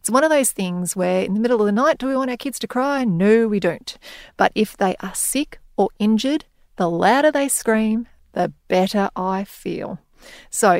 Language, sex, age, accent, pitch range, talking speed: English, female, 30-49, Australian, 185-250 Hz, 210 wpm